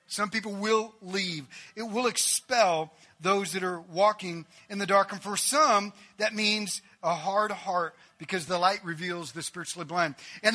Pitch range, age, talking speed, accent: 175-225 Hz, 40-59, 170 wpm, American